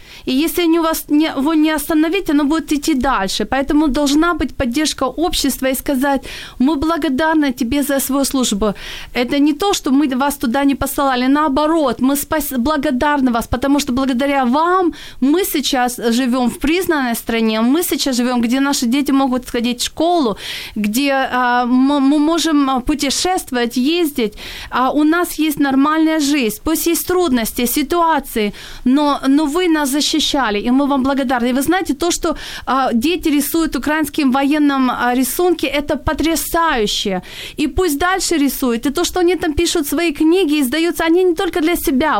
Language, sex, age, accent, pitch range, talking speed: Ukrainian, female, 30-49, native, 265-330 Hz, 160 wpm